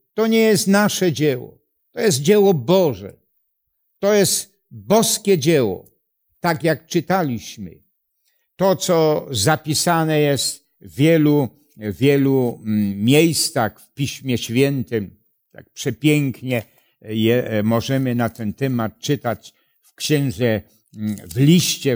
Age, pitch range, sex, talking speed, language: 60-79, 115-170 Hz, male, 105 wpm, Polish